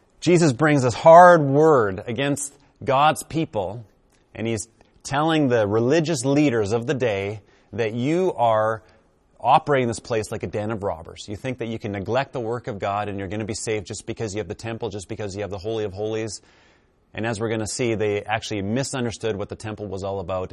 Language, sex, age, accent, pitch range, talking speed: English, male, 30-49, American, 100-135 Hz, 215 wpm